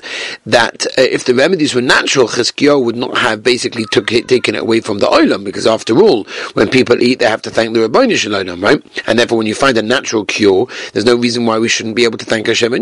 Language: English